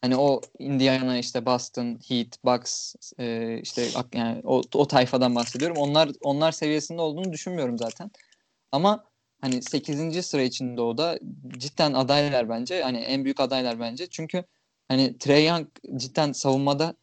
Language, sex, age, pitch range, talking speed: Turkish, male, 20-39, 125-155 Hz, 145 wpm